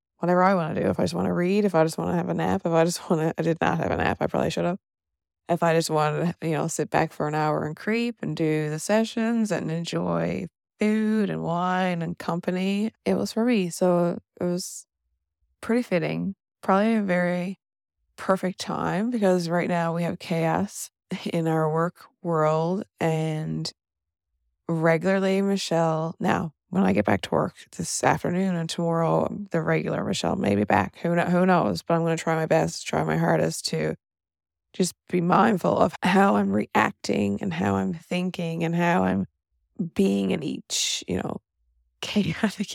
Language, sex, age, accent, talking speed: English, female, 20-39, American, 190 wpm